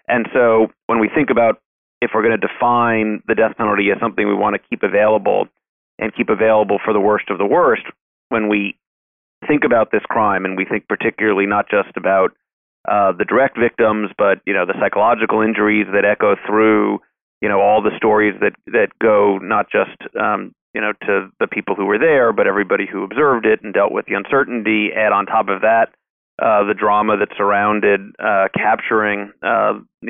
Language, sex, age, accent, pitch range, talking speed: English, male, 40-59, American, 100-110 Hz, 195 wpm